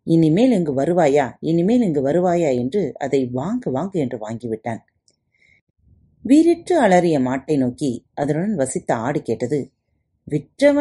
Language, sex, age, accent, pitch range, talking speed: Tamil, female, 30-49, native, 130-200 Hz, 115 wpm